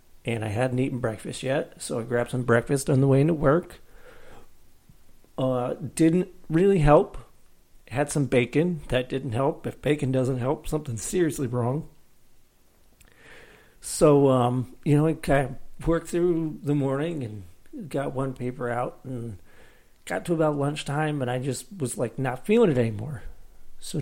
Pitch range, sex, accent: 125-150 Hz, male, American